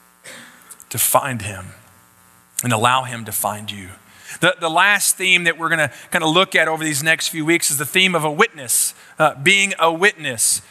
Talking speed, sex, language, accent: 200 wpm, male, English, American